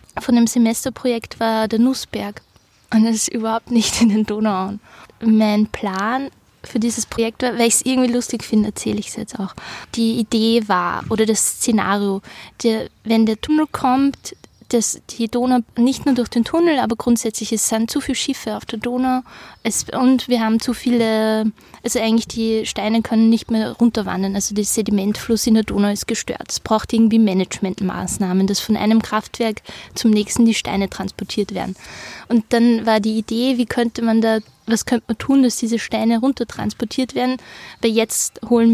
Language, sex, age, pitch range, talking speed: English, female, 20-39, 220-240 Hz, 180 wpm